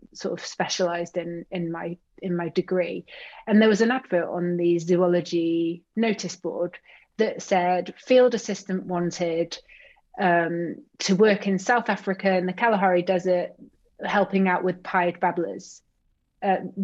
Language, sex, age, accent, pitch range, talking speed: English, female, 30-49, British, 180-205 Hz, 145 wpm